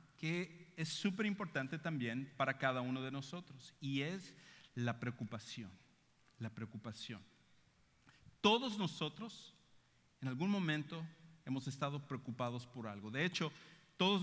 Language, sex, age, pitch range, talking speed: English, male, 50-69, 135-185 Hz, 120 wpm